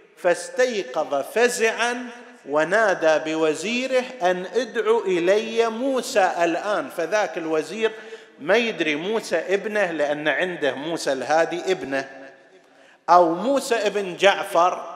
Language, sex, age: Arabic, male, 50-69